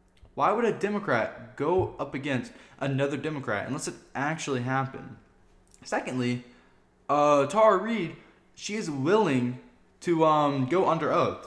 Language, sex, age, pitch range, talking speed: English, male, 10-29, 125-170 Hz, 130 wpm